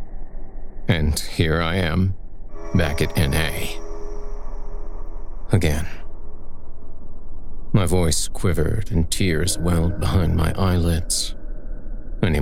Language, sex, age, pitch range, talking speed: English, male, 50-69, 80-95 Hz, 85 wpm